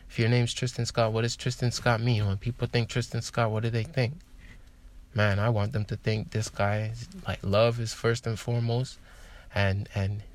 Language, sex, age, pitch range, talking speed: English, male, 20-39, 100-115 Hz, 210 wpm